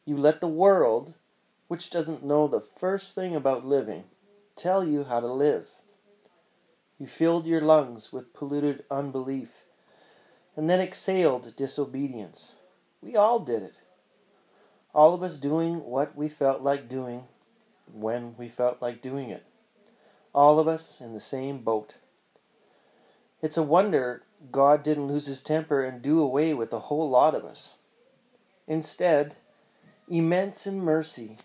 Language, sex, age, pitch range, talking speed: English, male, 40-59, 135-165 Hz, 145 wpm